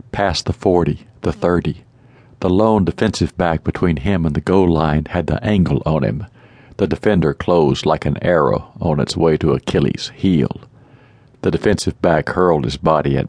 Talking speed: 175 wpm